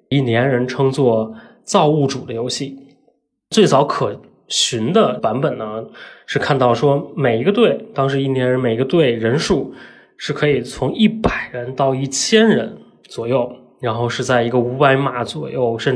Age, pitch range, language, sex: 20-39, 120-155 Hz, Chinese, male